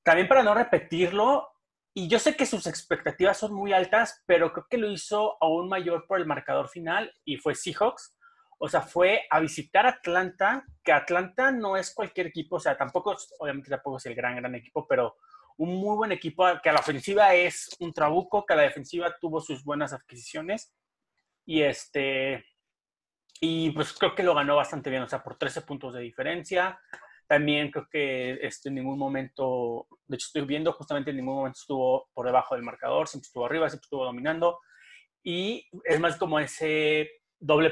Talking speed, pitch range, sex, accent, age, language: 190 wpm, 135-180 Hz, male, Mexican, 30-49, Spanish